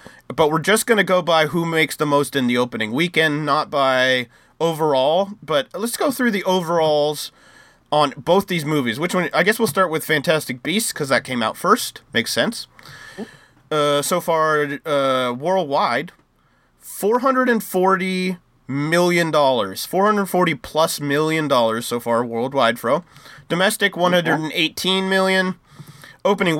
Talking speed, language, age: 150 wpm, English, 30-49